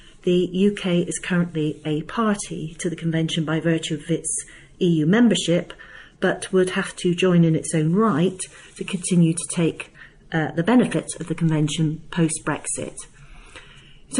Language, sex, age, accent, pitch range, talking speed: English, female, 40-59, British, 155-200 Hz, 150 wpm